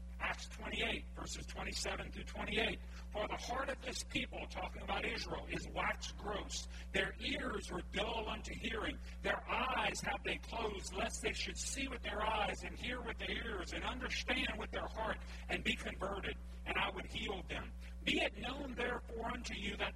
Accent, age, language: American, 50-69, English